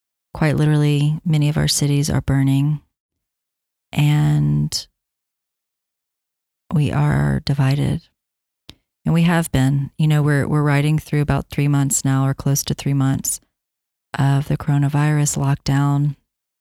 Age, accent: 30-49, American